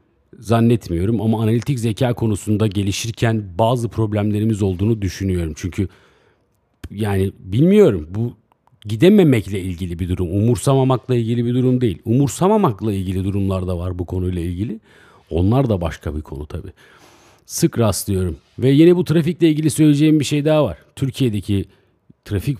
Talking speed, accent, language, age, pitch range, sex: 135 wpm, native, Turkish, 50-69, 95-125 Hz, male